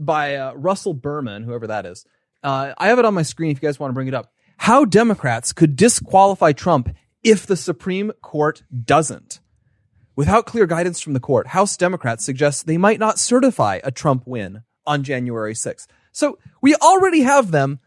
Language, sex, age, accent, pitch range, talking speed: English, male, 30-49, American, 150-245 Hz, 190 wpm